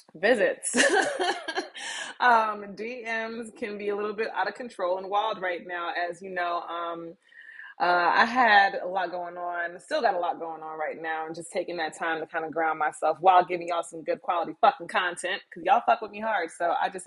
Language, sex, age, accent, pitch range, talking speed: English, female, 20-39, American, 170-245 Hz, 210 wpm